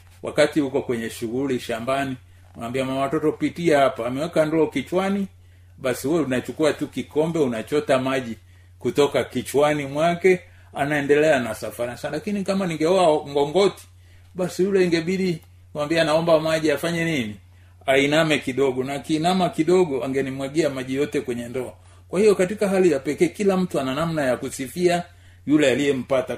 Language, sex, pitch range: Swahili, male, 120-165 Hz